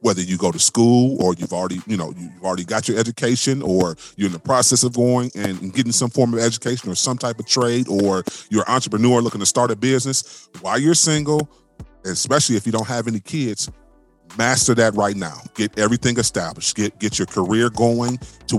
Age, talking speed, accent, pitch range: 30-49, 210 wpm, American, 100-125 Hz